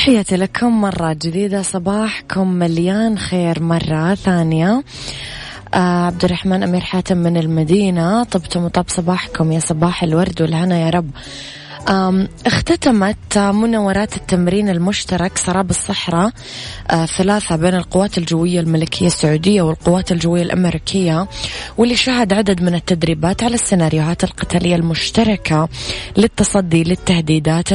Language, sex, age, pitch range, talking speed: Arabic, female, 20-39, 165-195 Hz, 110 wpm